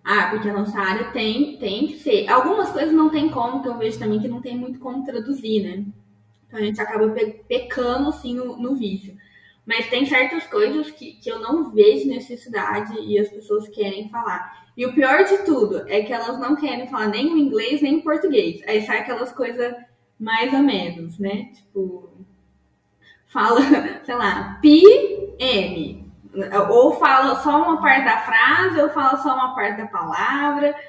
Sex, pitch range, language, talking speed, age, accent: female, 210-290 Hz, Portuguese, 180 wpm, 10-29, Brazilian